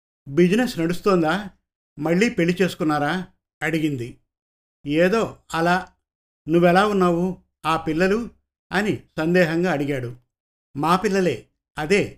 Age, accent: 50-69, native